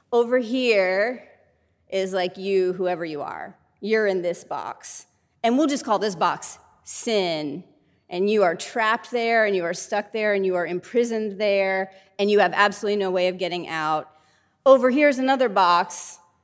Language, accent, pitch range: English, American, 185-255 Hz